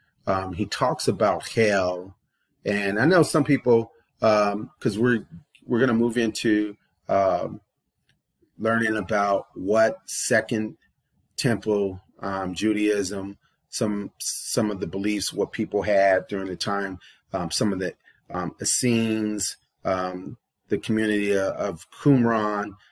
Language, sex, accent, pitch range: English, male, American, 100-115 Hz